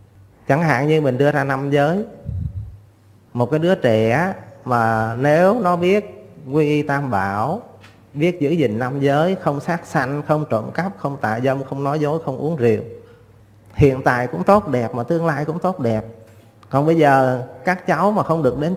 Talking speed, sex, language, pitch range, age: 190 wpm, male, Vietnamese, 110-155 Hz, 20-39